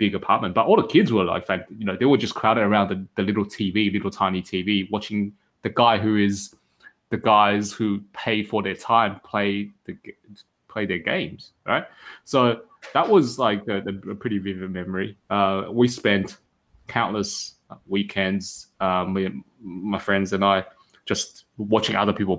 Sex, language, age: male, English, 20-39